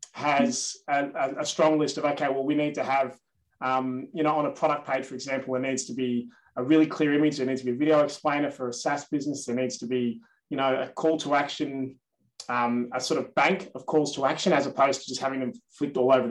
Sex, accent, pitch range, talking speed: male, Australian, 130-155 Hz, 250 wpm